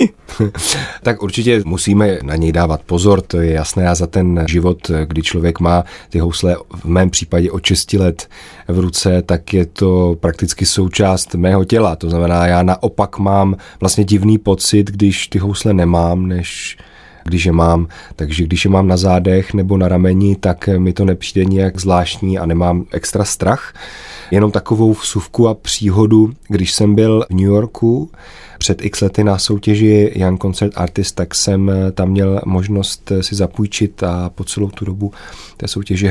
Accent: native